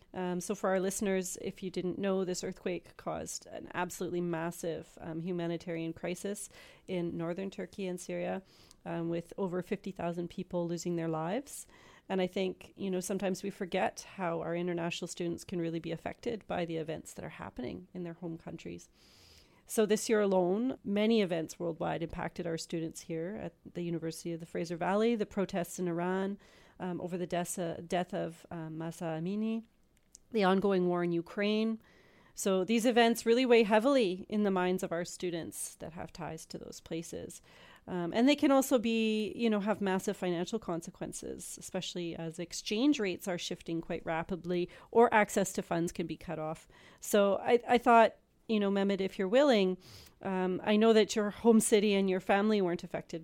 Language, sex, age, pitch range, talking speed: English, female, 40-59, 170-205 Hz, 180 wpm